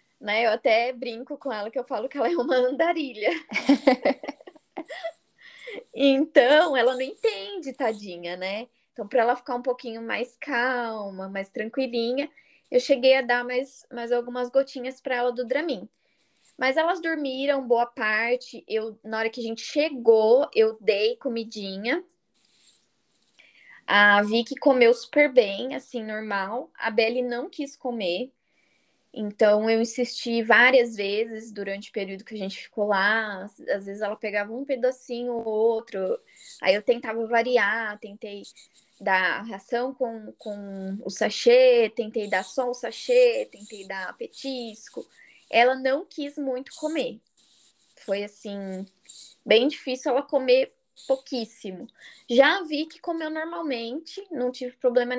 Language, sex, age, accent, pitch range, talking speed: Portuguese, female, 10-29, Brazilian, 220-275 Hz, 140 wpm